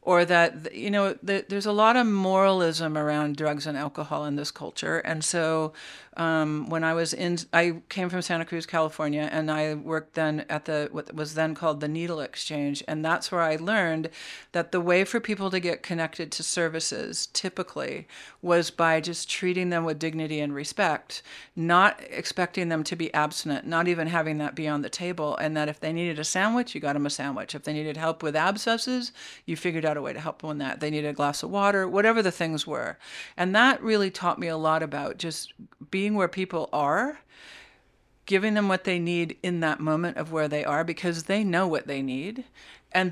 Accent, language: American, English